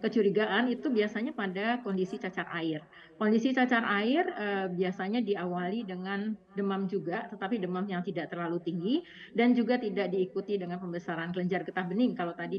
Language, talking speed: Indonesian, 155 wpm